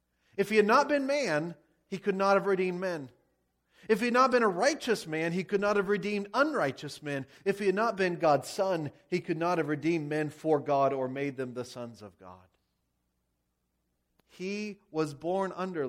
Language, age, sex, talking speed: English, 40-59, male, 200 wpm